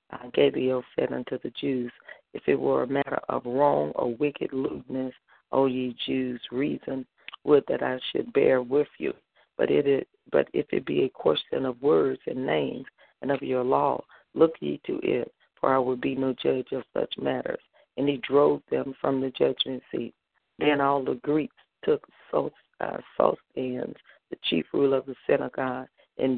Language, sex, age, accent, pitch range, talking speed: English, female, 40-59, American, 125-135 Hz, 180 wpm